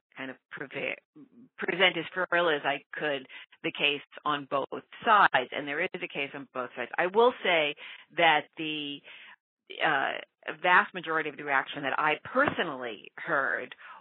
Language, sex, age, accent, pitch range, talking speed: English, female, 40-59, American, 135-185 Hz, 155 wpm